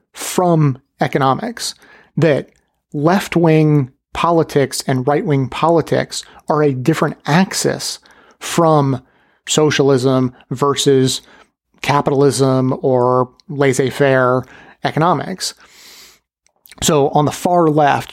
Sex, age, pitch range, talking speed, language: male, 30-49, 130-155 Hz, 80 wpm, English